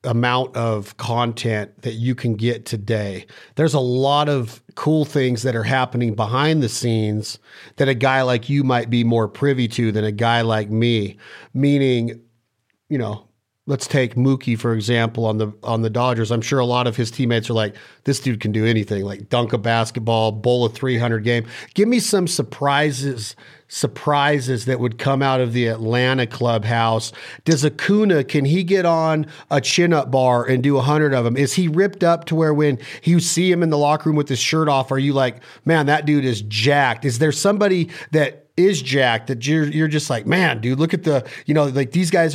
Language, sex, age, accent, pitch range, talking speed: English, male, 40-59, American, 115-150 Hz, 205 wpm